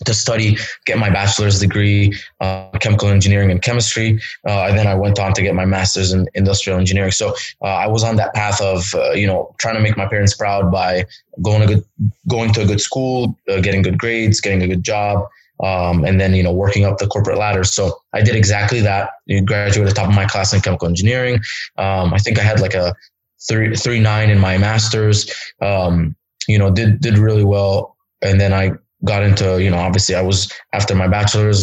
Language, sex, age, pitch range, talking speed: English, male, 20-39, 95-105 Hz, 220 wpm